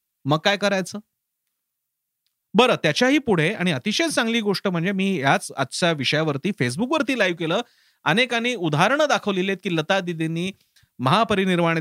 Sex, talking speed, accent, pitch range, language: male, 135 wpm, native, 150-195 Hz, Marathi